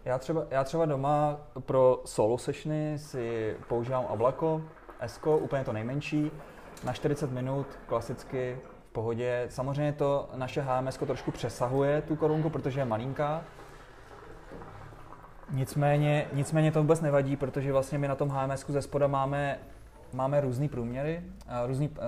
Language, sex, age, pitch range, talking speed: Czech, male, 20-39, 115-140 Hz, 140 wpm